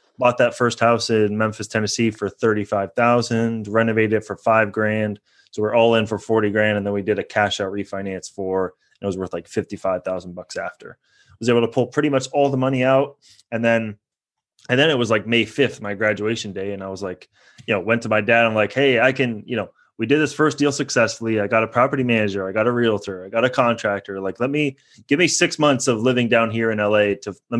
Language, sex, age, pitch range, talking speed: English, male, 20-39, 105-120 Hz, 245 wpm